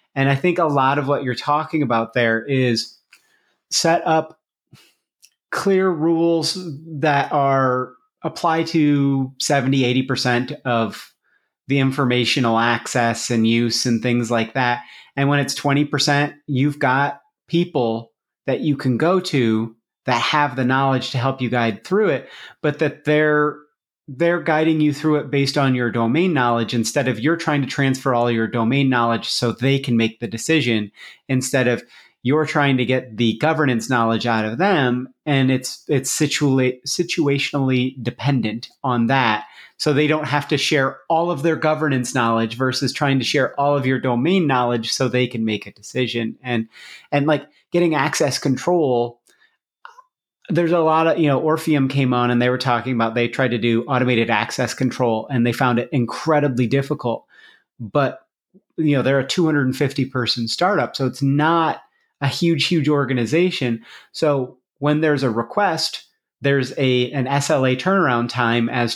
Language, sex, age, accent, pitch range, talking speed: English, male, 30-49, American, 120-150 Hz, 165 wpm